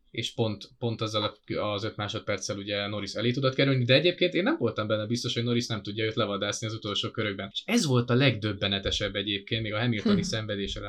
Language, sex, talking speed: English, male, 205 wpm